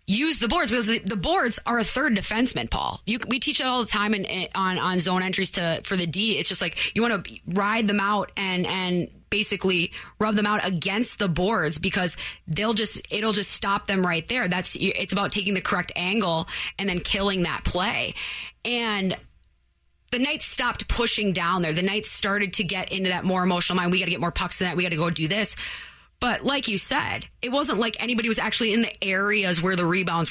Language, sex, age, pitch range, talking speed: English, female, 20-39, 180-225 Hz, 230 wpm